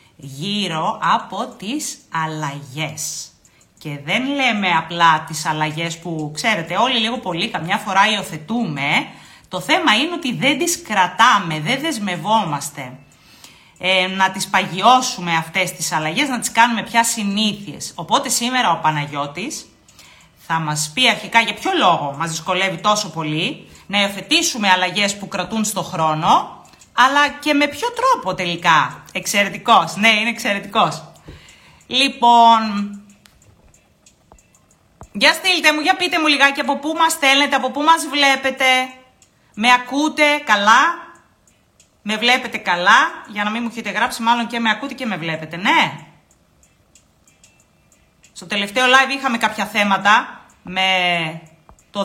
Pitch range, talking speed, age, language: 175-250 Hz, 130 wpm, 30-49, Greek